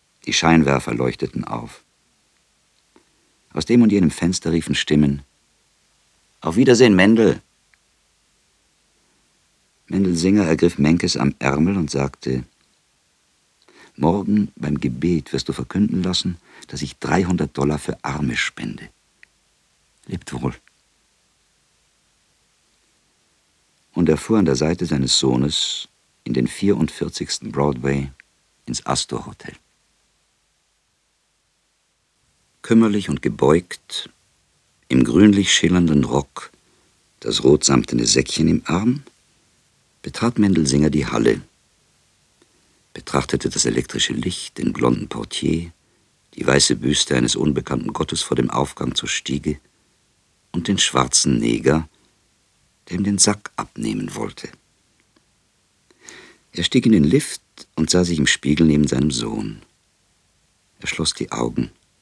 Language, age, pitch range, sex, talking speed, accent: German, 50-69, 70-85 Hz, male, 110 wpm, German